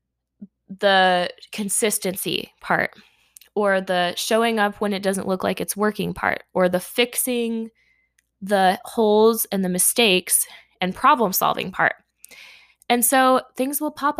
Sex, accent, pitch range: female, American, 195-250 Hz